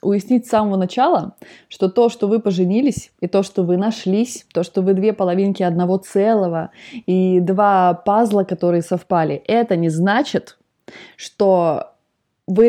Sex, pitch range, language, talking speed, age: female, 185-230 Hz, Russian, 145 wpm, 20-39